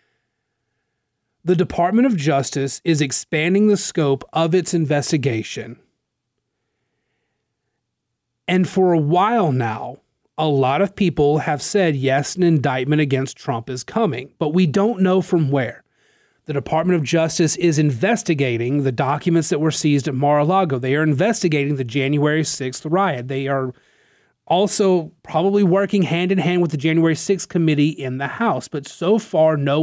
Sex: male